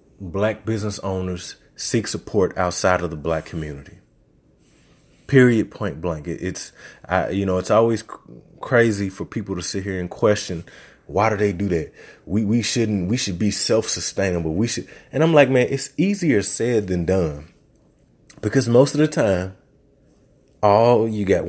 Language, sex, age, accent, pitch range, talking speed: English, male, 20-39, American, 85-115 Hz, 160 wpm